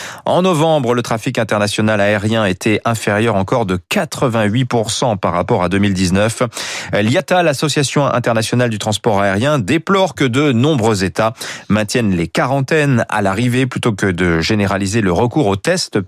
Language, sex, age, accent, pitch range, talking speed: French, male, 30-49, French, 105-150 Hz, 145 wpm